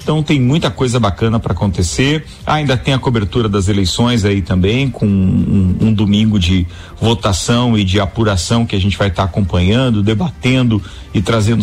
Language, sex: Portuguese, male